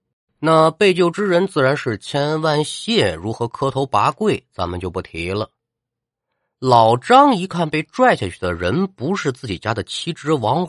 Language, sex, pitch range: Chinese, male, 115-185 Hz